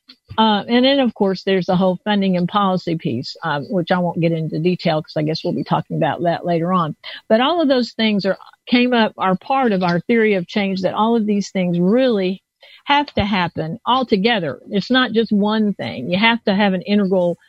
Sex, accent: female, American